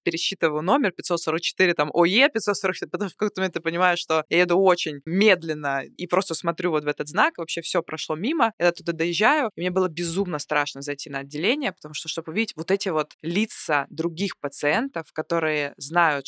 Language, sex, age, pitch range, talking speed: Russian, female, 20-39, 150-190 Hz, 185 wpm